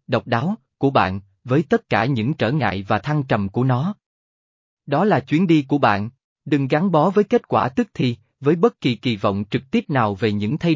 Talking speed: 225 wpm